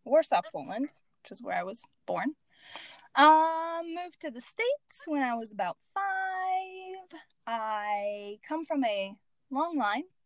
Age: 20-39